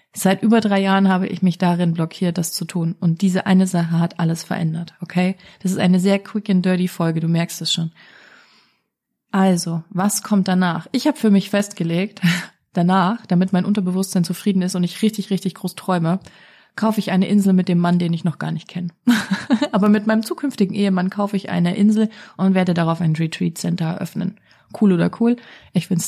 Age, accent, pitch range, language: 30-49, German, 175-200 Hz, German